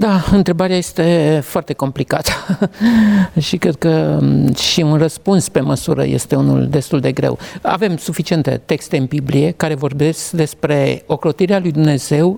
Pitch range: 155-195 Hz